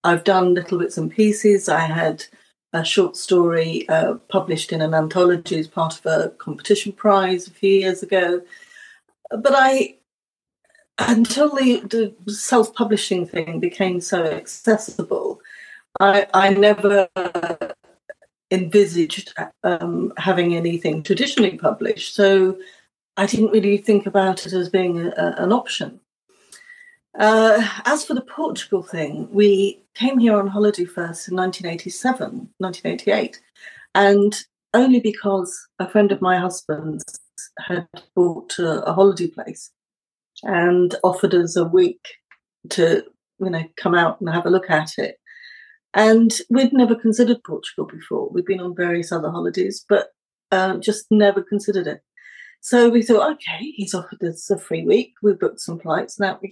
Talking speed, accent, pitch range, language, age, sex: 145 wpm, British, 180-225 Hz, English, 40-59, female